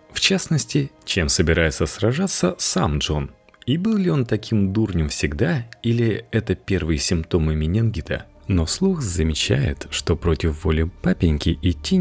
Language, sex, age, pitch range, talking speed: Russian, male, 30-49, 75-115 Hz, 135 wpm